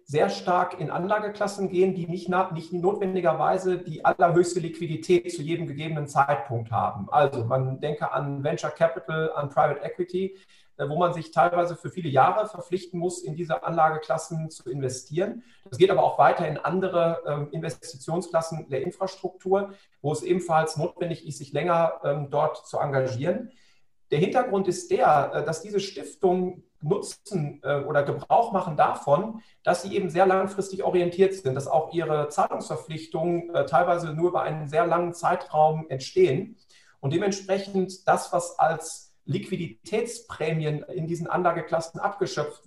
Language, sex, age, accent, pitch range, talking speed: German, male, 40-59, German, 155-185 Hz, 140 wpm